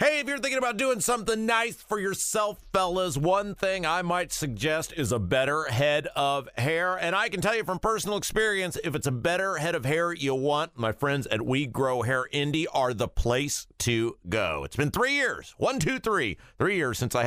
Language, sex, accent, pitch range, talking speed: English, male, American, 125-190 Hz, 215 wpm